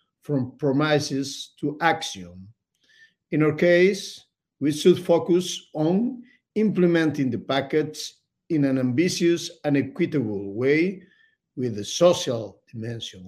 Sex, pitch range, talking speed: male, 125-165 Hz, 110 wpm